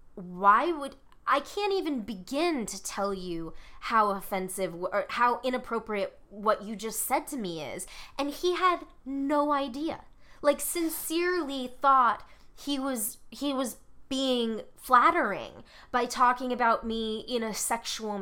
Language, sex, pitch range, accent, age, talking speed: English, female, 230-305 Hz, American, 20-39, 140 wpm